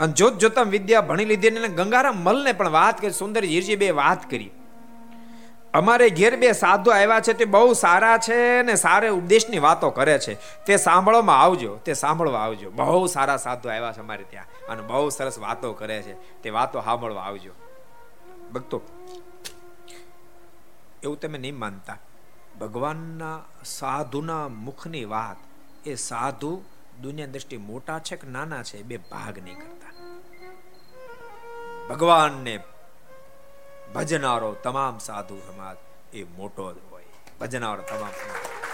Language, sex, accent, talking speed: Gujarati, male, native, 55 wpm